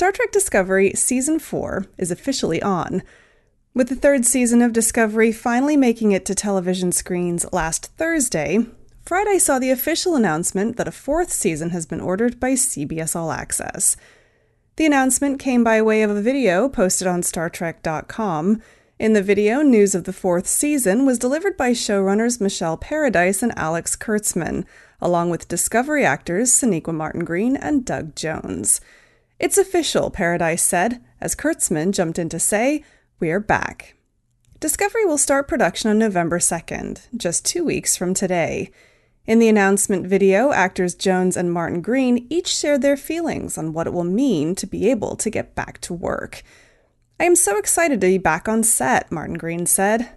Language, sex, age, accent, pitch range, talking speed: English, female, 30-49, American, 180-270 Hz, 165 wpm